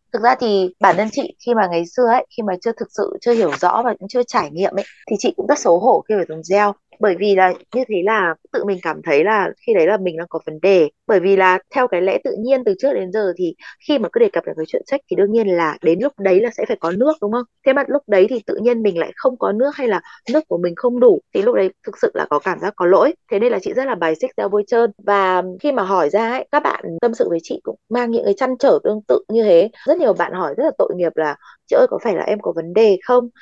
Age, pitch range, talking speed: 20-39, 195-275 Hz, 305 wpm